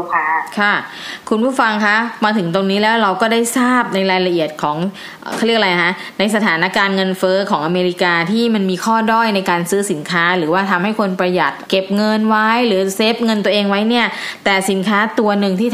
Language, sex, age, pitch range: Thai, female, 20-39, 180-215 Hz